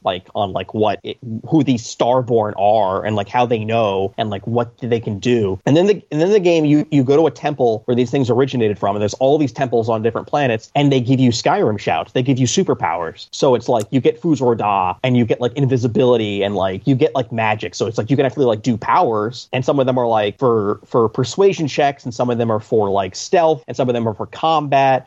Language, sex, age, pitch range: English, male, 30-49, 115-145 Hz